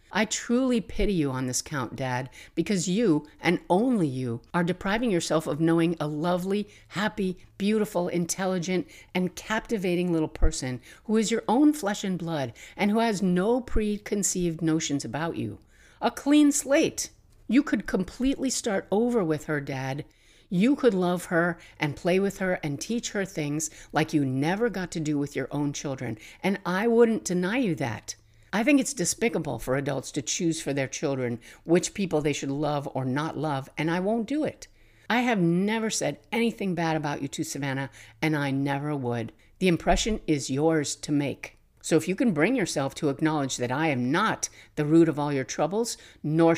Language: English